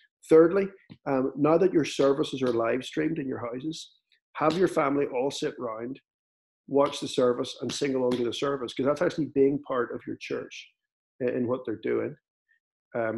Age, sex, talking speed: 50-69, male, 185 wpm